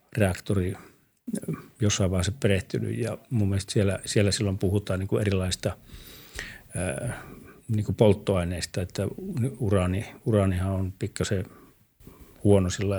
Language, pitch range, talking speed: Finnish, 95-110 Hz, 90 wpm